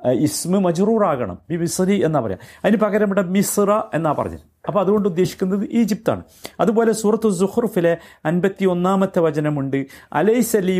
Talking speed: 135 wpm